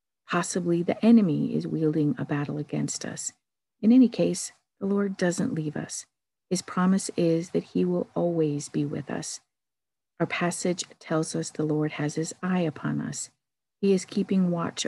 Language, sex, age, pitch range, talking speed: English, female, 50-69, 155-185 Hz, 170 wpm